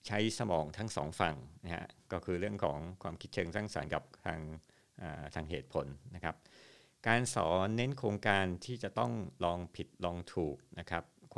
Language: Thai